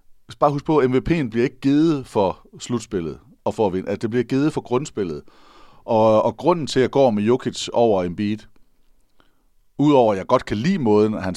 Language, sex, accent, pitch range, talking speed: Danish, male, native, 95-125 Hz, 215 wpm